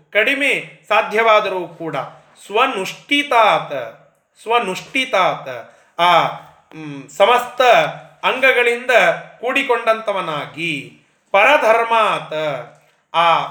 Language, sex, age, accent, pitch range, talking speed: Kannada, male, 30-49, native, 170-230 Hz, 50 wpm